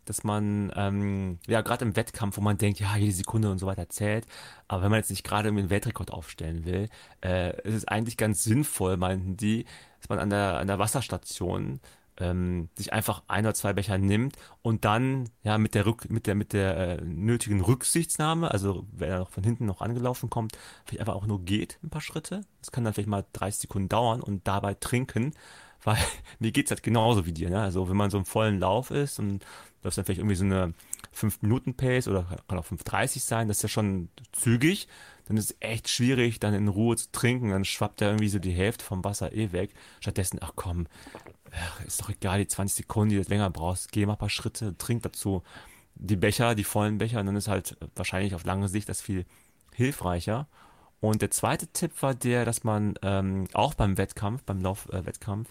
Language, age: German, 30-49